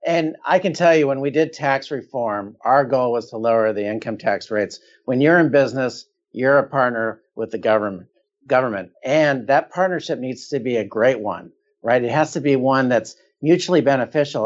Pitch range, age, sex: 135-175 Hz, 50-69, male